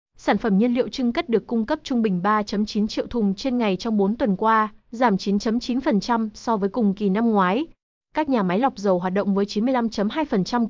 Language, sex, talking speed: Vietnamese, female, 210 wpm